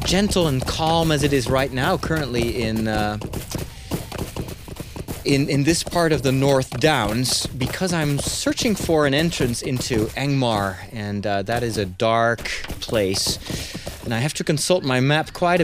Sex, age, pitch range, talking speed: male, 30-49, 120-160 Hz, 160 wpm